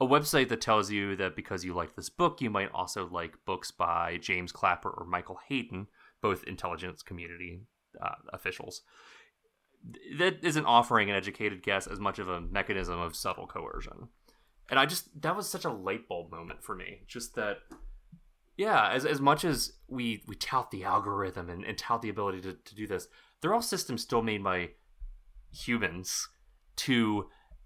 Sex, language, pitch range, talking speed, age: male, English, 90-130 Hz, 180 wpm, 30-49